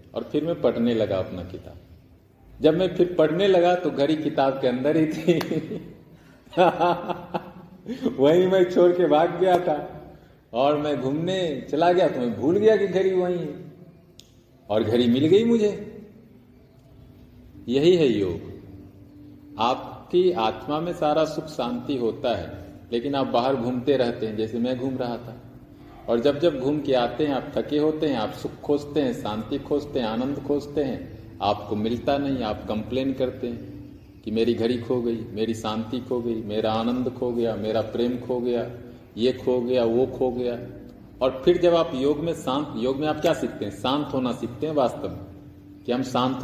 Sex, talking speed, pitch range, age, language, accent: male, 180 wpm, 120-160 Hz, 40-59, Hindi, native